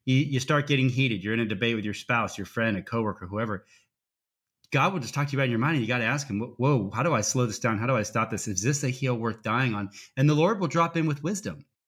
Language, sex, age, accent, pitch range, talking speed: English, male, 30-49, American, 115-145 Hz, 295 wpm